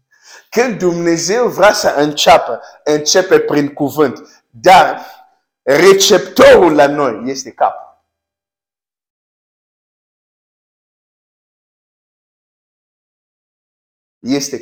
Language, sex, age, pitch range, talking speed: Romanian, male, 60-79, 100-155 Hz, 70 wpm